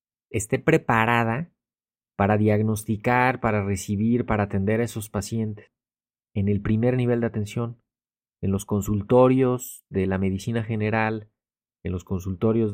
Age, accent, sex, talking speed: 30-49, Mexican, male, 125 wpm